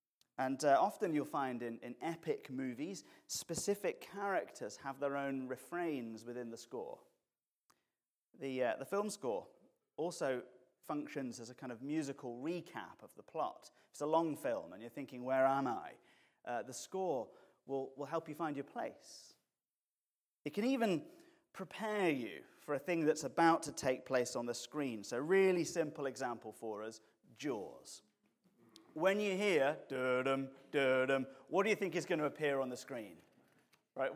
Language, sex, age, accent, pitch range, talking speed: English, male, 30-49, British, 130-195 Hz, 160 wpm